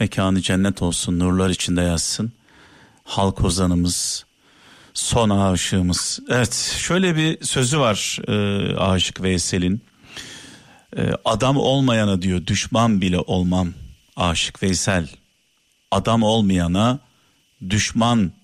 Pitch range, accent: 95-130 Hz, native